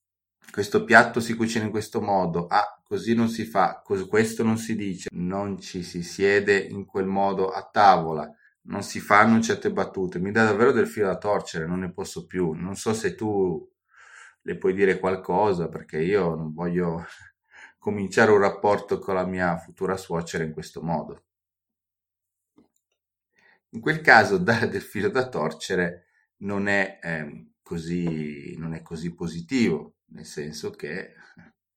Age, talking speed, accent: 30-49, 155 wpm, native